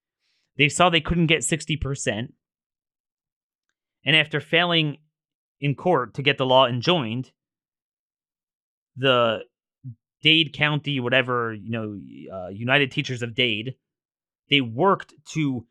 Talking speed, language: 115 wpm, English